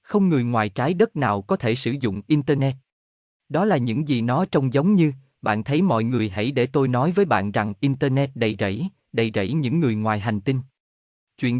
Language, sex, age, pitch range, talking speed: Vietnamese, male, 20-39, 110-155 Hz, 210 wpm